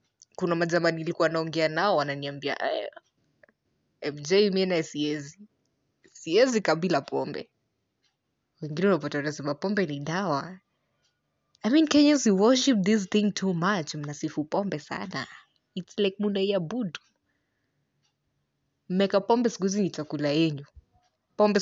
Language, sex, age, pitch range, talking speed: English, female, 20-39, 140-190 Hz, 130 wpm